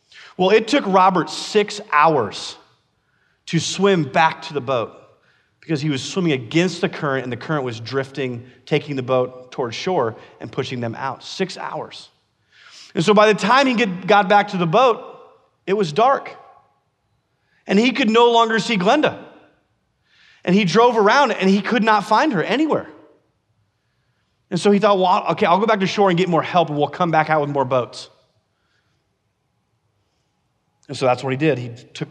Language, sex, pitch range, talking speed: English, male, 125-185 Hz, 185 wpm